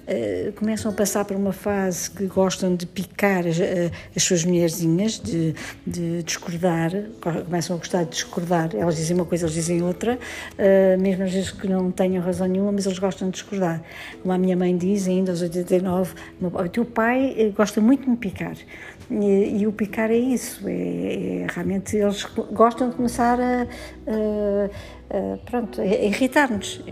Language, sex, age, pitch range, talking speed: Portuguese, female, 60-79, 180-220 Hz, 180 wpm